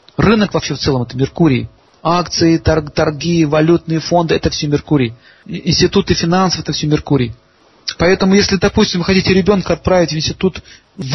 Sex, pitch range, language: male, 150-185 Hz, Russian